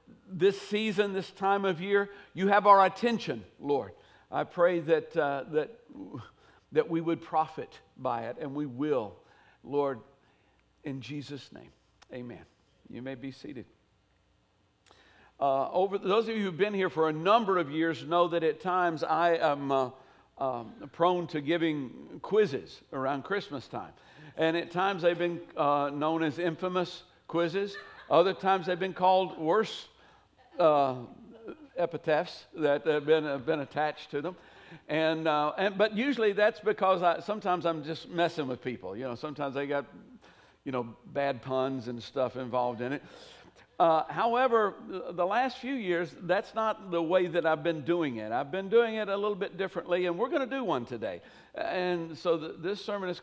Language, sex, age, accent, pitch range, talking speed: English, male, 60-79, American, 150-195 Hz, 175 wpm